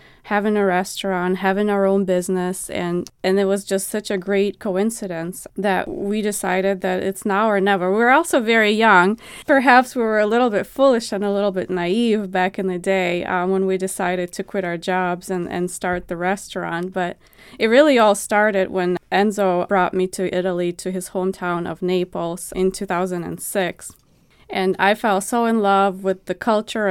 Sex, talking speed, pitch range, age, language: female, 185 wpm, 185-220 Hz, 20-39, English